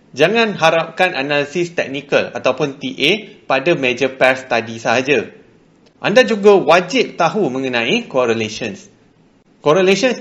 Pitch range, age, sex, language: 135-190 Hz, 30-49, male, Malay